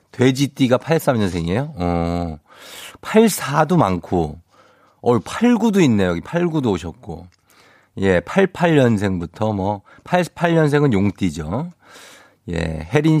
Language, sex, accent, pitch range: Korean, male, native, 95-160 Hz